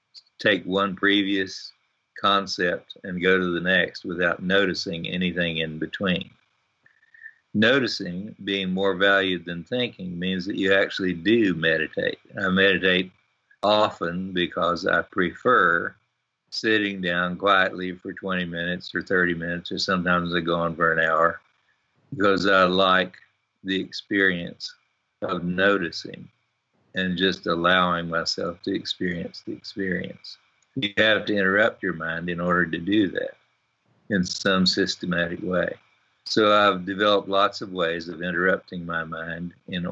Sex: male